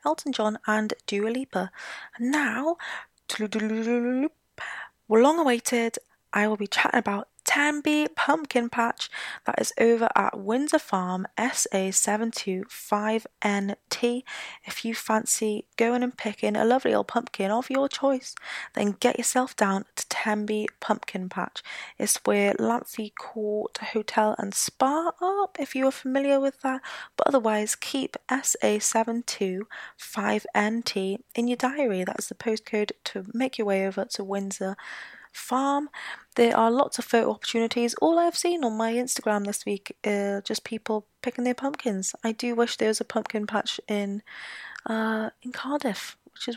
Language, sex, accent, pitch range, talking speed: English, female, British, 210-260 Hz, 160 wpm